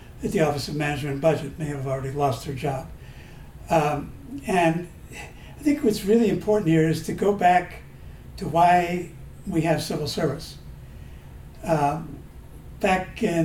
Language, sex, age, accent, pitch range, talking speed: English, male, 60-79, American, 155-185 Hz, 150 wpm